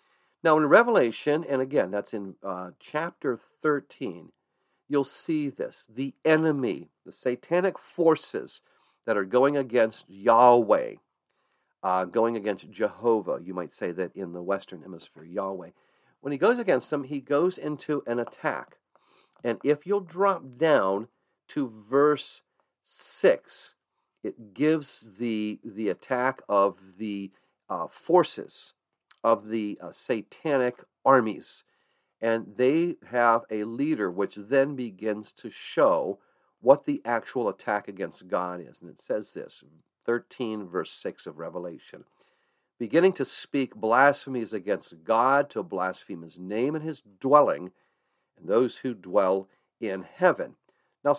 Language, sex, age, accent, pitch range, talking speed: English, male, 50-69, American, 105-145 Hz, 135 wpm